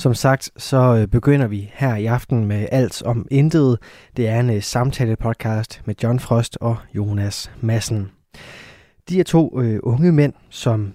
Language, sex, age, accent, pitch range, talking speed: Danish, male, 20-39, native, 110-130 Hz, 165 wpm